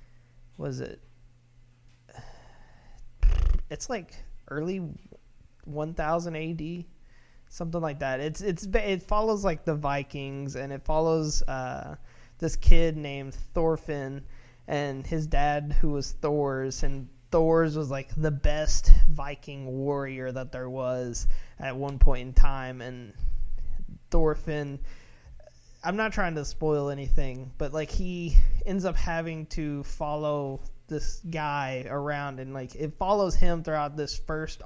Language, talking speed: English, 130 wpm